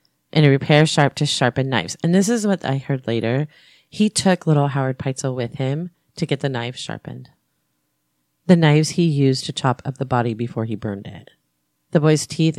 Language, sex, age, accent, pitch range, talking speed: English, female, 30-49, American, 120-155 Hz, 200 wpm